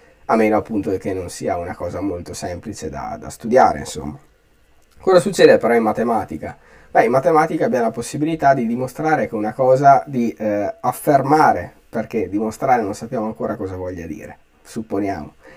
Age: 20-39